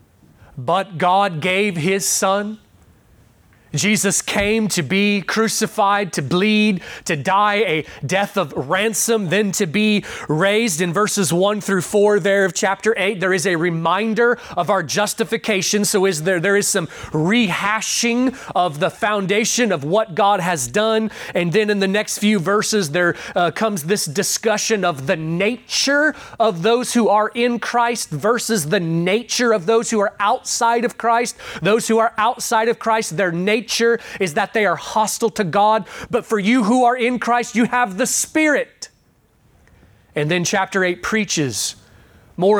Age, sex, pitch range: 30-49, male, 175-220 Hz